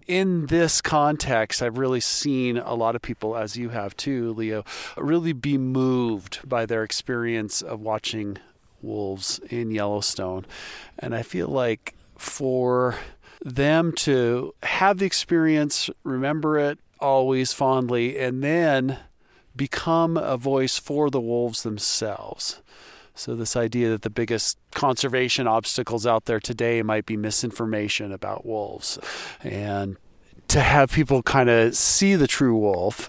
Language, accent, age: English, American, 40-59